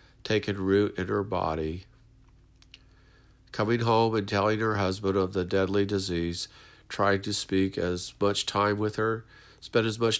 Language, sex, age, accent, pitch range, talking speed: English, male, 50-69, American, 95-110 Hz, 155 wpm